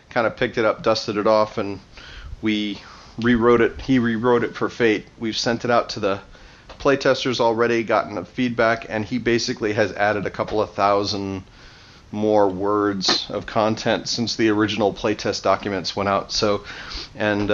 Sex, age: male, 40-59